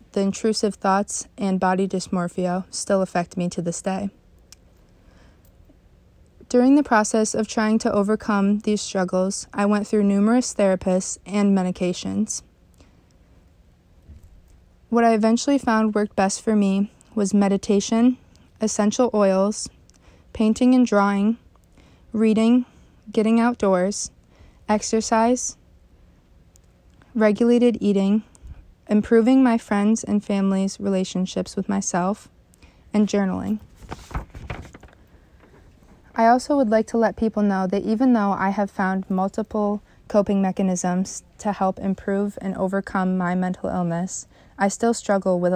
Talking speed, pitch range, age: 115 wpm, 190-220 Hz, 20-39